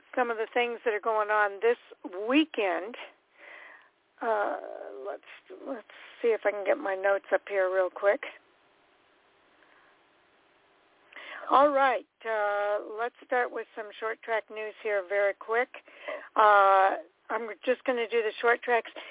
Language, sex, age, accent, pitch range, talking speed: English, female, 60-79, American, 200-250 Hz, 145 wpm